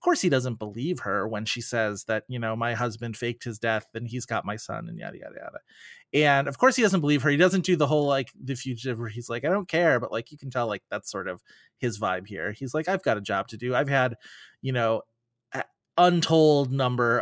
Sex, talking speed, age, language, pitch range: male, 250 wpm, 30-49, English, 115-145 Hz